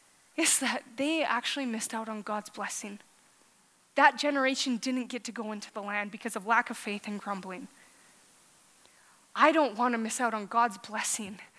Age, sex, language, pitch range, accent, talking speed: 20-39, female, English, 215-265 Hz, American, 175 wpm